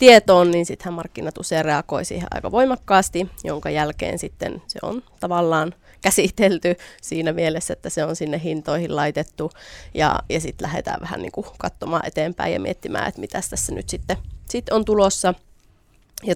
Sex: female